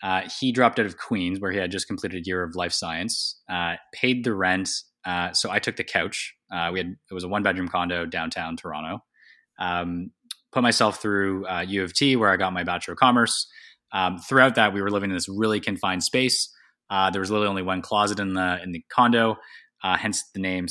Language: English